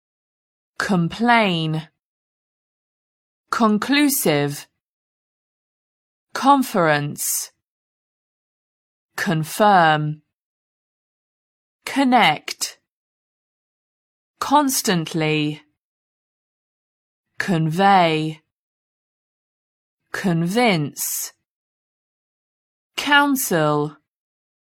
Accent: British